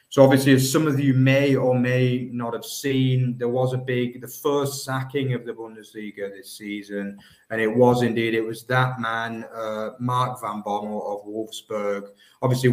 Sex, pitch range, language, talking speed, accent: male, 110-130 Hz, English, 185 wpm, British